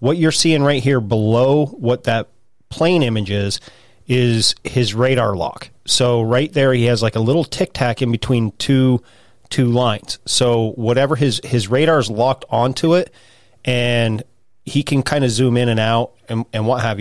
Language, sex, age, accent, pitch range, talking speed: English, male, 30-49, American, 115-130 Hz, 180 wpm